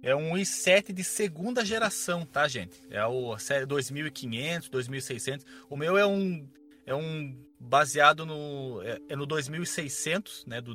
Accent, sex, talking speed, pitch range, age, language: Brazilian, male, 150 wpm, 130-190 Hz, 20-39, Portuguese